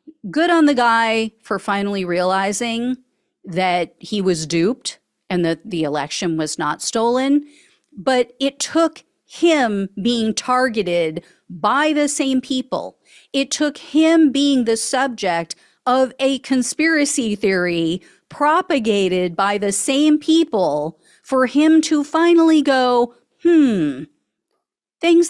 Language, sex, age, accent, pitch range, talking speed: English, female, 40-59, American, 195-310 Hz, 120 wpm